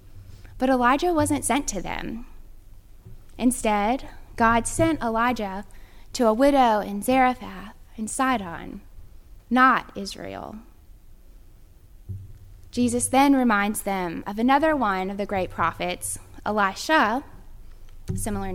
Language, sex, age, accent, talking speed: English, female, 10-29, American, 105 wpm